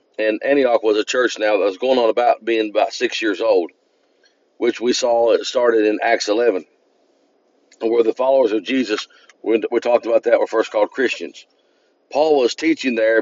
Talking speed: 190 wpm